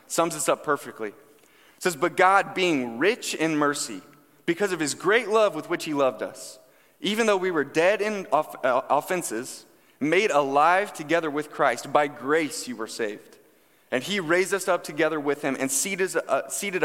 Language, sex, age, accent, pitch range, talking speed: English, male, 20-39, American, 135-175 Hz, 175 wpm